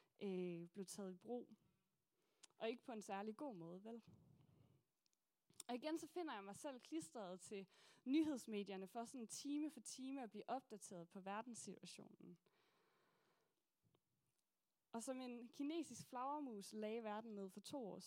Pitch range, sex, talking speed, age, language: 195-245 Hz, female, 150 wpm, 20-39, Danish